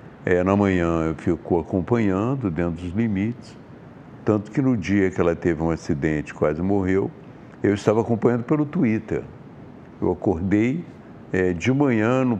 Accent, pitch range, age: Brazilian, 90-125 Hz, 60-79